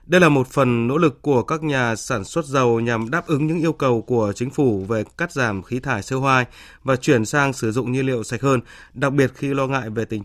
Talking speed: 260 wpm